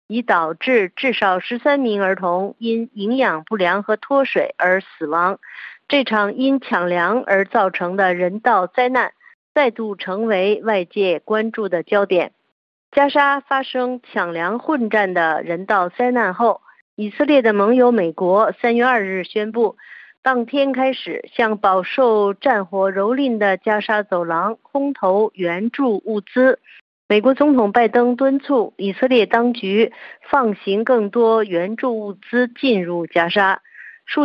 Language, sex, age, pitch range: Chinese, female, 50-69, 190-250 Hz